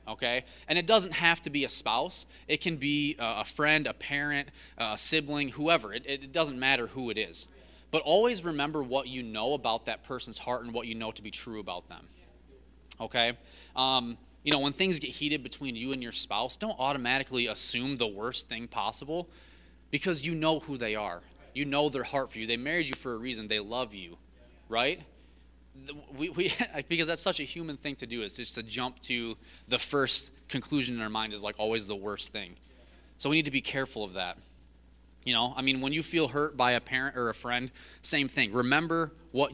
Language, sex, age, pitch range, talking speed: English, male, 20-39, 110-150 Hz, 210 wpm